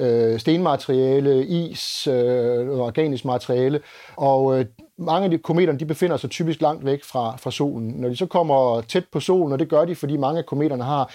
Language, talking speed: Danish, 200 wpm